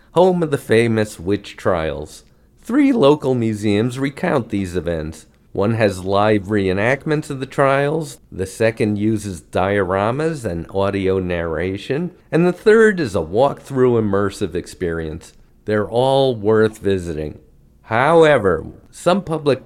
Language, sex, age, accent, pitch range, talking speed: English, male, 50-69, American, 100-145 Hz, 125 wpm